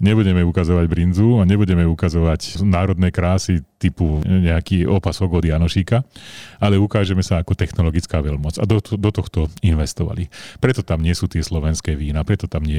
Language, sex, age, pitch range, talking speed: Slovak, male, 40-59, 85-105 Hz, 160 wpm